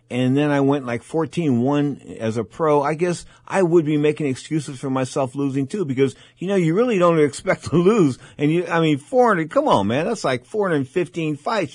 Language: English